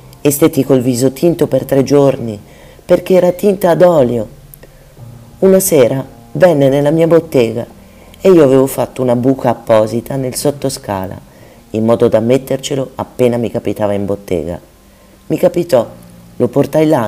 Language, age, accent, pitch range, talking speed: Italian, 40-59, native, 100-130 Hz, 150 wpm